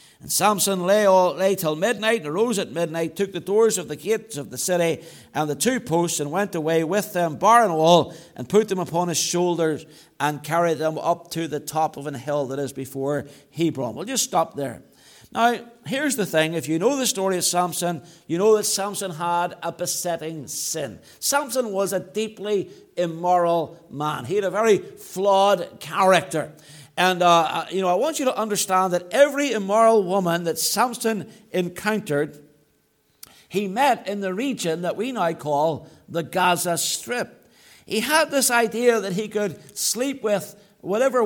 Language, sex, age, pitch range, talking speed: English, male, 60-79, 165-225 Hz, 180 wpm